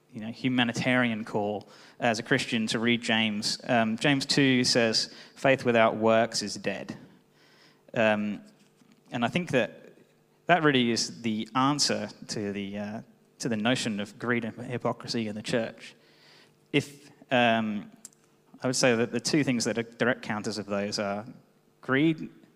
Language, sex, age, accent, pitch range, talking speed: English, male, 20-39, British, 110-135 Hz, 155 wpm